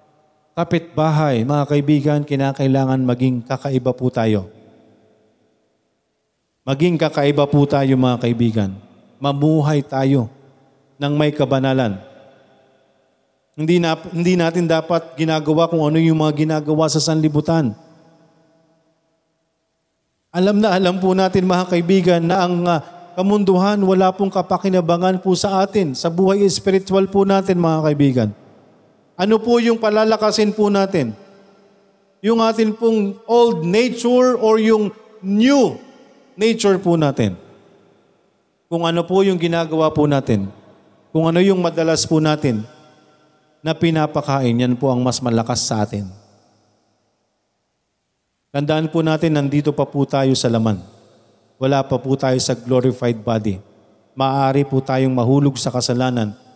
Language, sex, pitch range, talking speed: Filipino, male, 135-185 Hz, 125 wpm